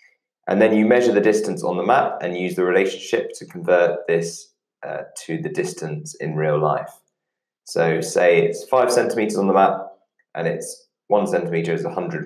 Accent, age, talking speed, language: British, 20-39, 180 wpm, English